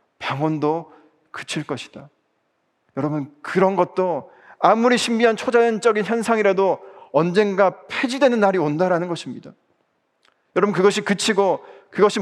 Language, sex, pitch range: Korean, male, 150-205 Hz